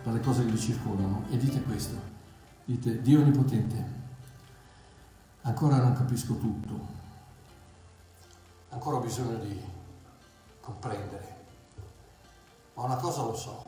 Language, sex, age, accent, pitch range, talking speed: Italian, male, 50-69, native, 105-130 Hz, 110 wpm